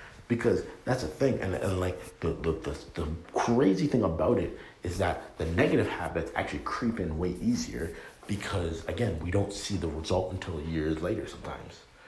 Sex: male